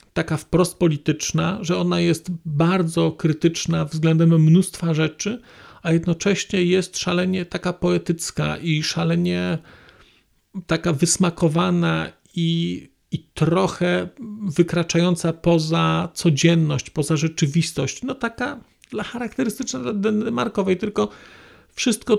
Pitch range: 145-180 Hz